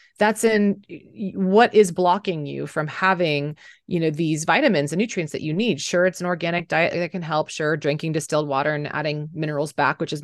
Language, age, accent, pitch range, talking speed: English, 30-49, American, 150-185 Hz, 205 wpm